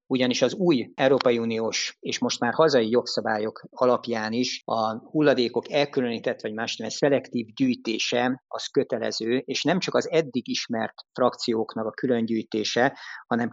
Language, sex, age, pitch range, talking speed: Hungarian, male, 50-69, 115-140 Hz, 140 wpm